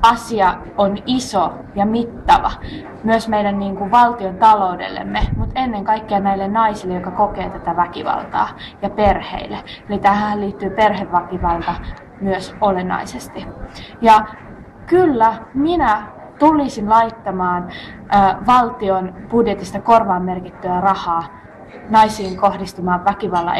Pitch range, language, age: 195-235 Hz, Finnish, 20-39